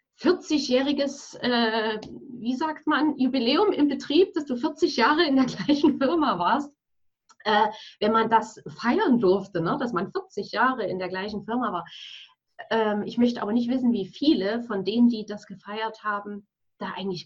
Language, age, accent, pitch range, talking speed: German, 30-49, German, 200-255 Hz, 170 wpm